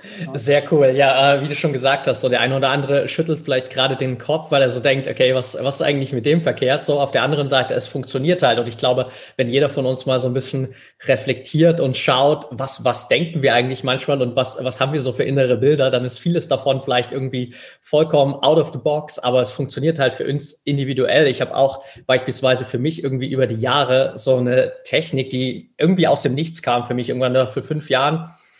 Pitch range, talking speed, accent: 130-150 Hz, 235 wpm, German